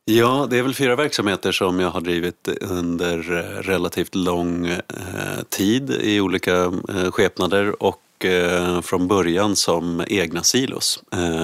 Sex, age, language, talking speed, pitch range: male, 30-49, Swedish, 120 wpm, 85-95 Hz